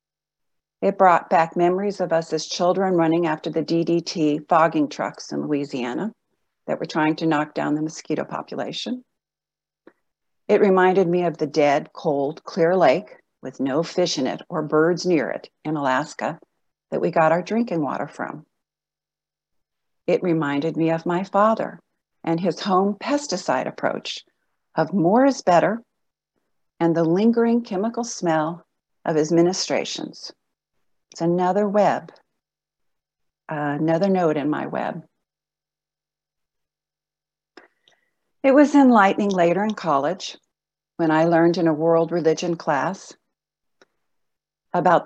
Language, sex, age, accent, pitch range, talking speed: English, female, 50-69, American, 160-200 Hz, 130 wpm